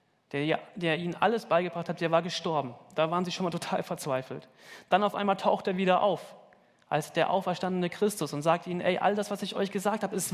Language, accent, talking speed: German, German, 225 wpm